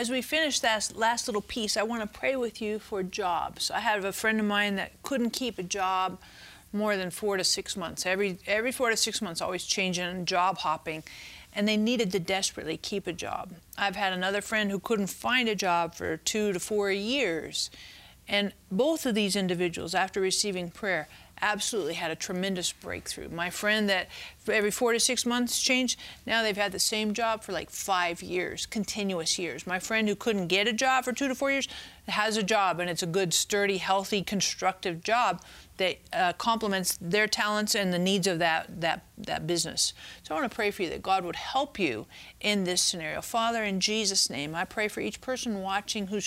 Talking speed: 205 wpm